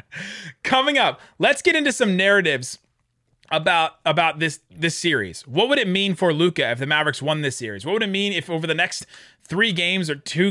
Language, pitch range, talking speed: English, 145-190 Hz, 205 wpm